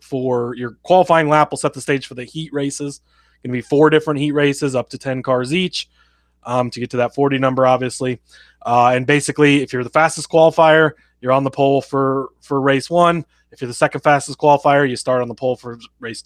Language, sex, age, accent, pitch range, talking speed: English, male, 20-39, American, 125-150 Hz, 225 wpm